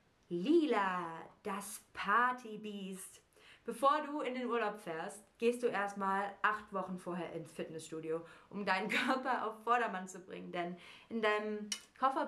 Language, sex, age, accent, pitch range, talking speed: German, female, 20-39, German, 185-235 Hz, 135 wpm